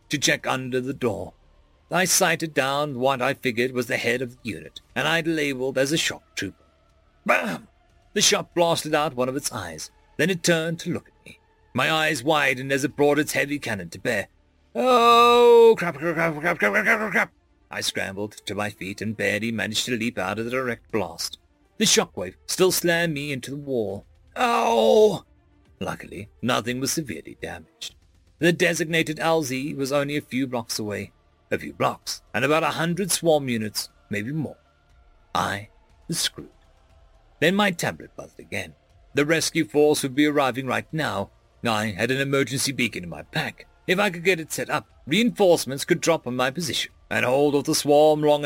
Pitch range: 105-160 Hz